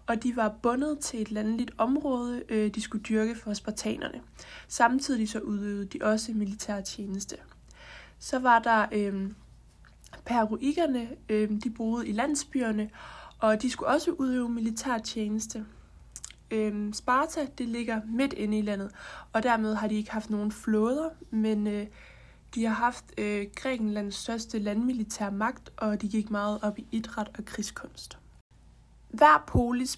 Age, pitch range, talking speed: 20-39, 215-250 Hz, 150 wpm